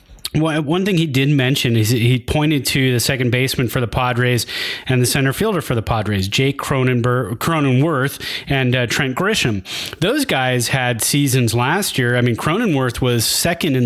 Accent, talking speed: American, 175 wpm